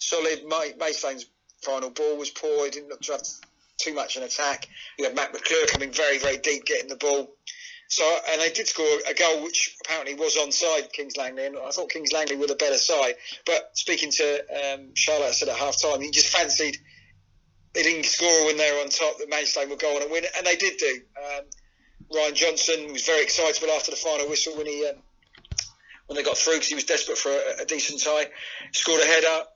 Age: 40-59